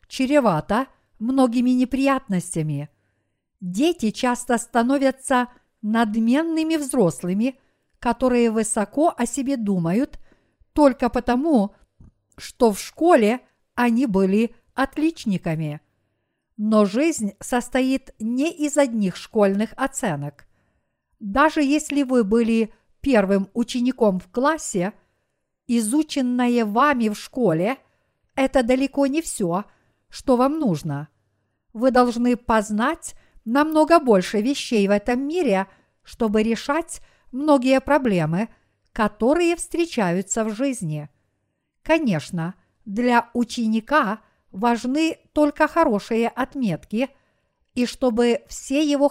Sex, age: female, 50-69